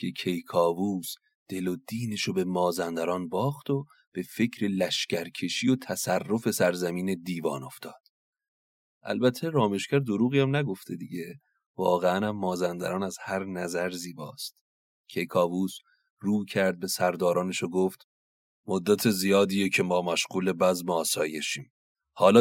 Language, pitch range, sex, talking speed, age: Persian, 90-120 Hz, male, 120 wpm, 30-49